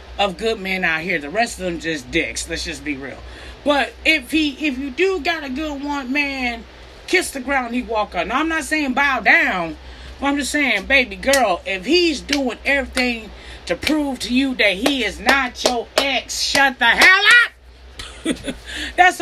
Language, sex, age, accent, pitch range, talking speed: English, female, 30-49, American, 200-280 Hz, 195 wpm